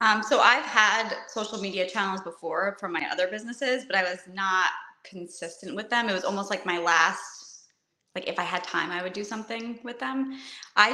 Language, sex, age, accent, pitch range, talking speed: English, female, 20-39, American, 175-220 Hz, 205 wpm